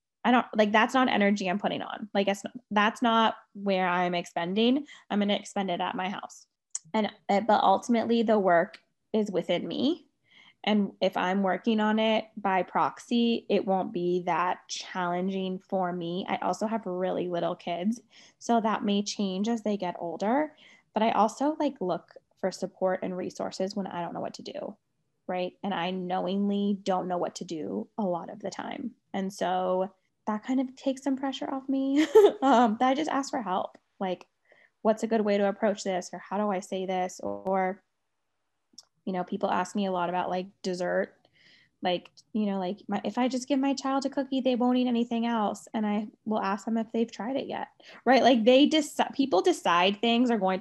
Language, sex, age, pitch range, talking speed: English, female, 10-29, 185-240 Hz, 200 wpm